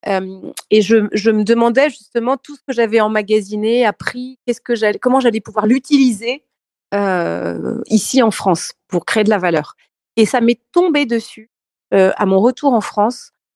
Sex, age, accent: female, 40-59, French